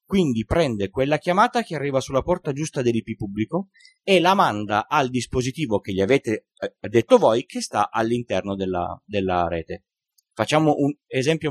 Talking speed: 155 wpm